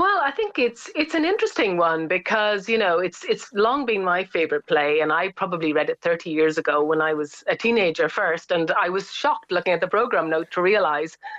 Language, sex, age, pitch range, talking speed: English, female, 30-49, 160-225 Hz, 225 wpm